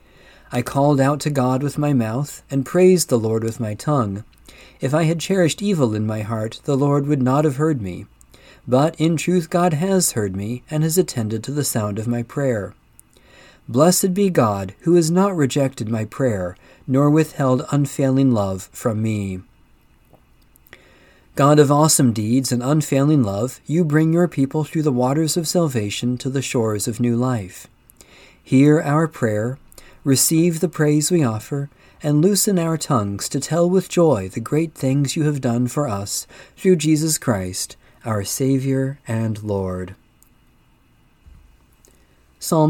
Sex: male